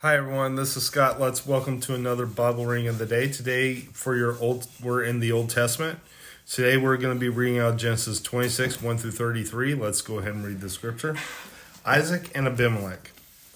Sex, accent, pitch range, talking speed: male, American, 115-135 Hz, 200 wpm